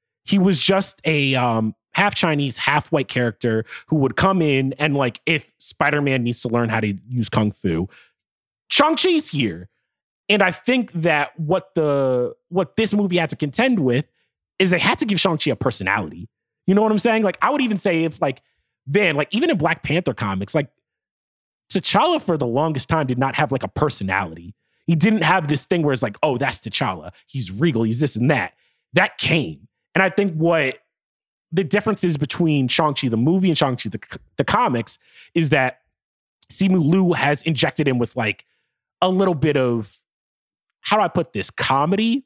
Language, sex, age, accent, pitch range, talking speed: English, male, 30-49, American, 130-185 Hz, 190 wpm